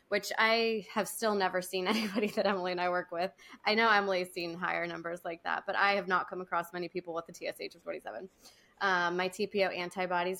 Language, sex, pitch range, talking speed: English, female, 175-200 Hz, 220 wpm